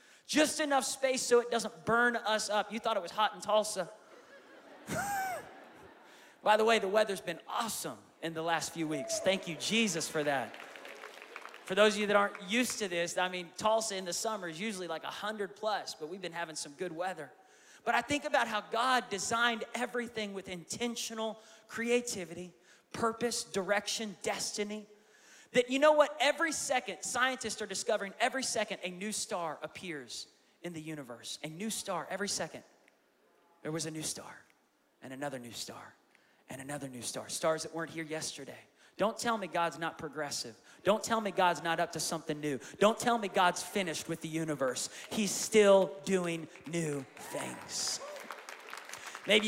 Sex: male